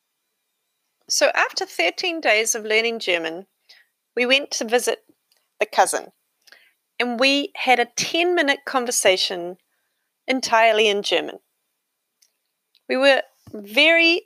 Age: 30-49